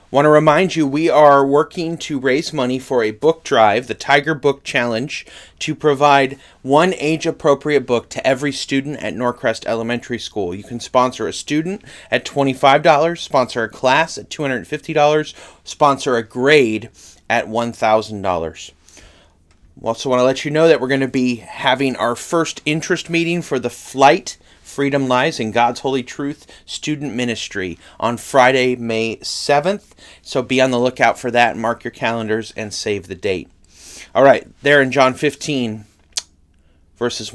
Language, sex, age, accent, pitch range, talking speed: English, male, 30-49, American, 110-145 Hz, 160 wpm